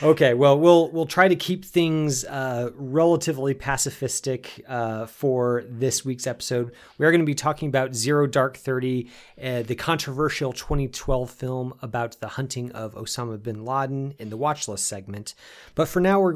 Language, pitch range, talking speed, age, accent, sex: English, 115-145 Hz, 170 wpm, 30-49, American, male